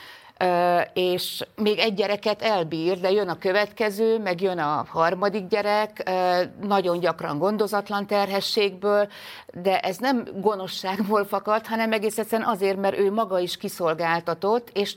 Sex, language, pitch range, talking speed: female, Hungarian, 170-200 Hz, 130 wpm